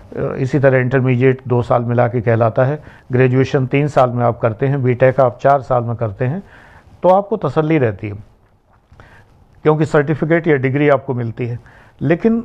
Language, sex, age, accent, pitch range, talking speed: Hindi, male, 50-69, native, 120-150 Hz, 180 wpm